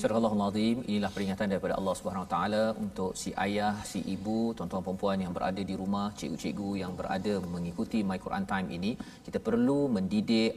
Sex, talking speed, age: male, 170 wpm, 40-59